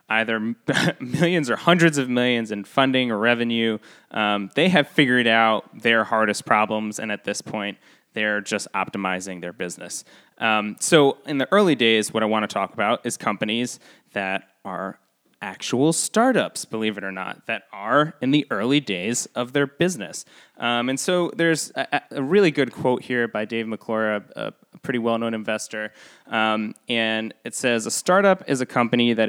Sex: male